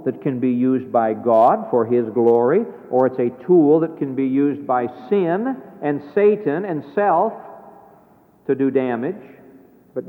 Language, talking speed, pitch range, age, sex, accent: English, 160 wpm, 140-200 Hz, 60-79, male, American